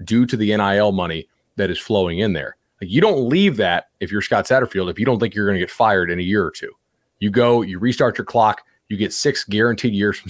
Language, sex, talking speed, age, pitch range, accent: English, male, 255 wpm, 30-49, 95-125 Hz, American